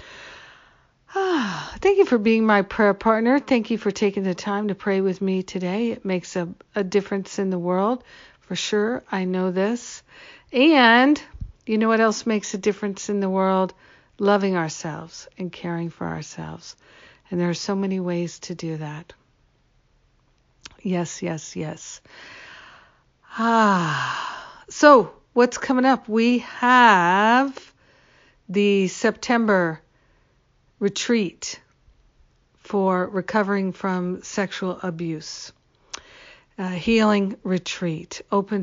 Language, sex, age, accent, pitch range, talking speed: English, female, 60-79, American, 180-225 Hz, 125 wpm